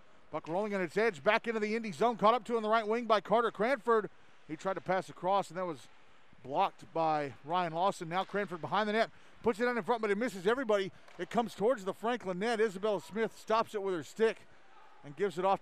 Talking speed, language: 240 wpm, English